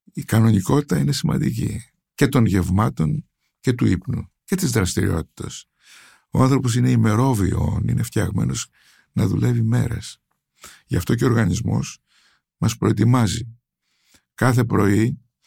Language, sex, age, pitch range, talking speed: Greek, male, 60-79, 110-145 Hz, 120 wpm